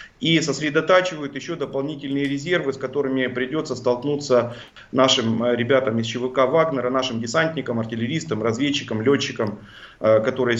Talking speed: 115 wpm